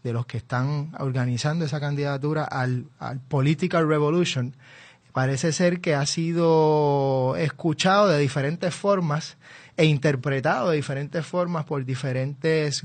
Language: Spanish